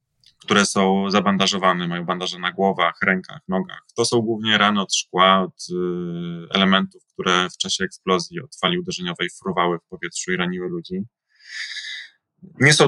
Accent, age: native, 20-39